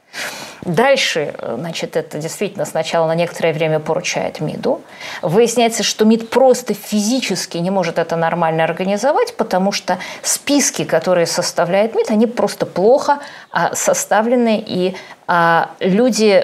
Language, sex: Russian, female